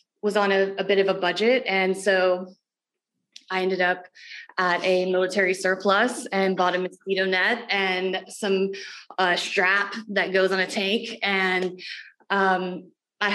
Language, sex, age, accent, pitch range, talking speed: English, female, 20-39, American, 185-220 Hz, 155 wpm